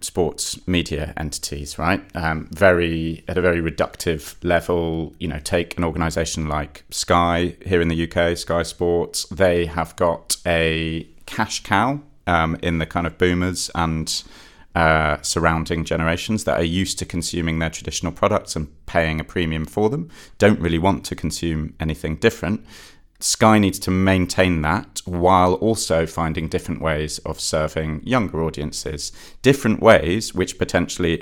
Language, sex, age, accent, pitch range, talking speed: English, male, 30-49, British, 75-90 Hz, 150 wpm